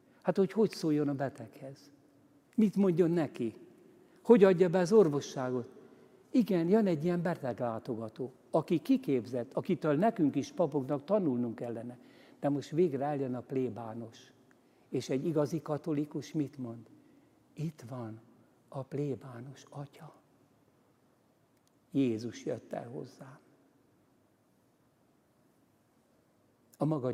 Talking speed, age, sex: 110 wpm, 60-79, male